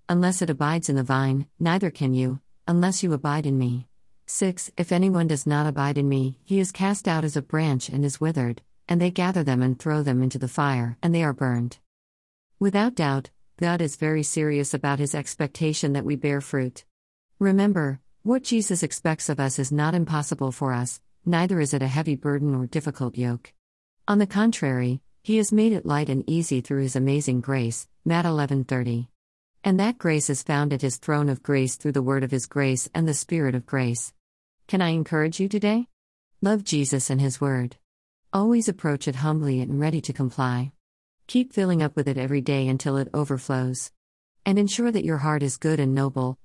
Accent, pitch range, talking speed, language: American, 130-165 Hz, 200 wpm, English